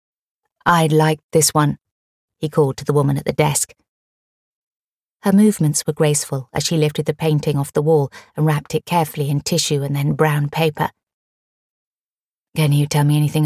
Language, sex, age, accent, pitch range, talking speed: English, female, 30-49, British, 145-175 Hz, 175 wpm